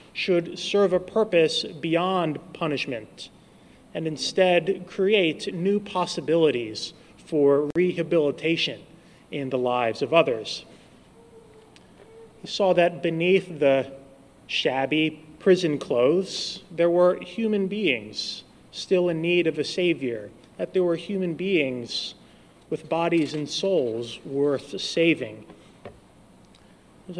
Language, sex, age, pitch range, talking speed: English, male, 30-49, 145-185 Hz, 105 wpm